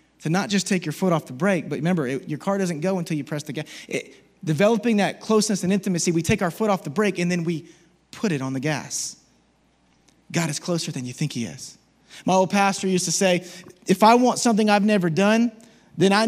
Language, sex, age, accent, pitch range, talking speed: English, male, 20-39, American, 175-230 Hz, 230 wpm